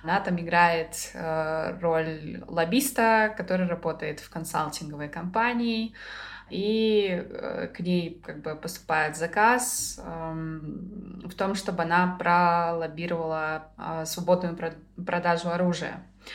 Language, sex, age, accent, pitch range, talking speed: Russian, female, 20-39, native, 165-195 Hz, 85 wpm